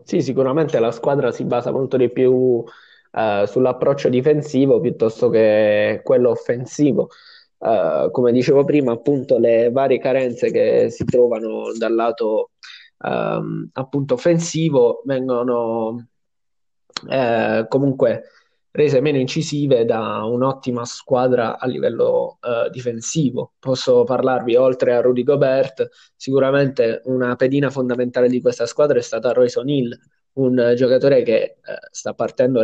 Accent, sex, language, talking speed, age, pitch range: native, male, Italian, 120 wpm, 20-39, 125-160 Hz